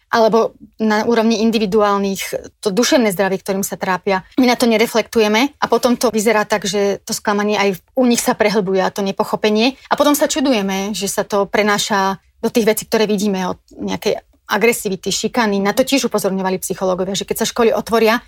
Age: 30-49